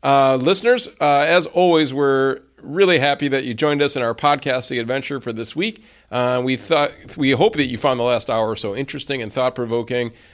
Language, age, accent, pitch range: English, 40-59, American, 115-140 Hz